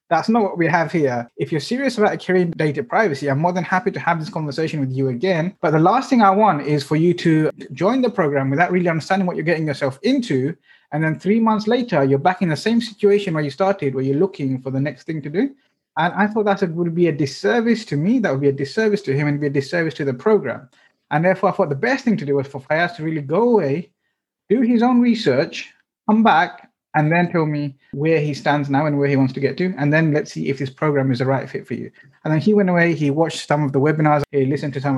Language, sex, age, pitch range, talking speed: English, male, 30-49, 140-185 Hz, 270 wpm